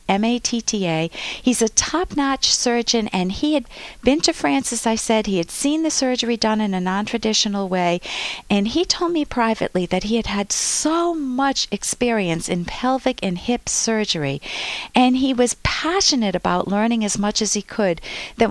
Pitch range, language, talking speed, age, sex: 205-265 Hz, English, 170 wpm, 50-69, female